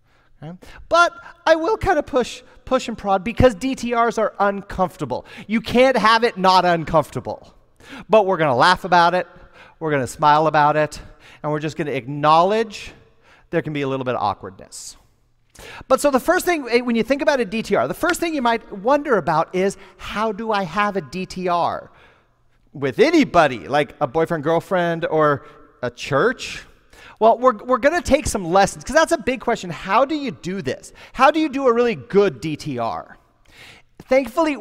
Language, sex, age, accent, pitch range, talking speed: English, male, 40-59, American, 170-255 Hz, 185 wpm